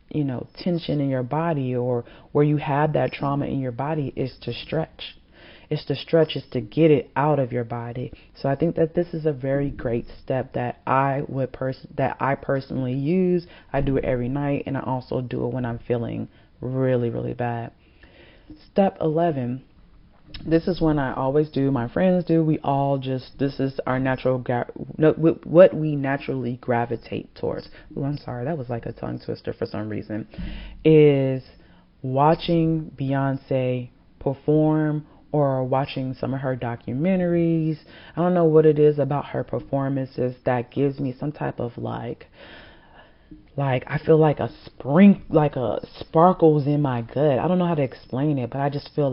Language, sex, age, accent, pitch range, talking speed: English, female, 30-49, American, 125-155 Hz, 180 wpm